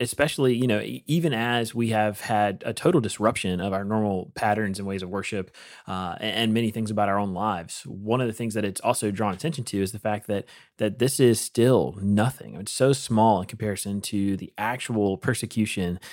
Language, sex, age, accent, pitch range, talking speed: English, male, 30-49, American, 105-125 Hz, 205 wpm